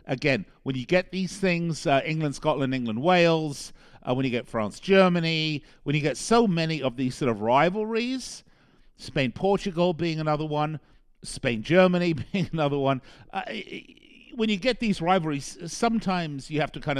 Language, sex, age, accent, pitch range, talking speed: English, male, 50-69, British, 125-175 Hz, 150 wpm